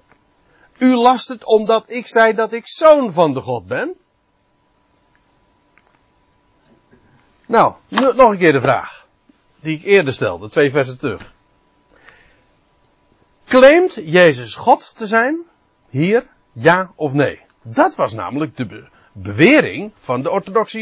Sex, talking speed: male, 130 wpm